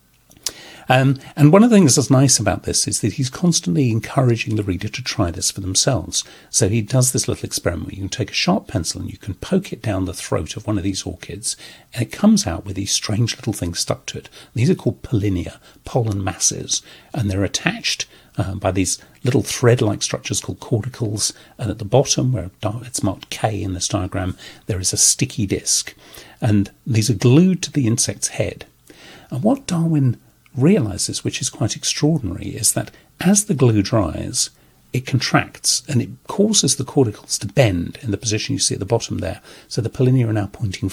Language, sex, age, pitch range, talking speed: English, male, 50-69, 100-140 Hz, 205 wpm